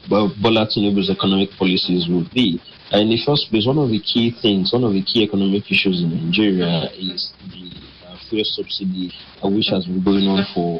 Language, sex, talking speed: English, male, 205 wpm